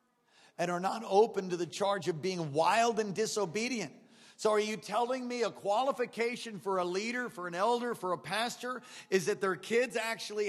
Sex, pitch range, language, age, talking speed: male, 165-235 Hz, English, 40-59, 190 wpm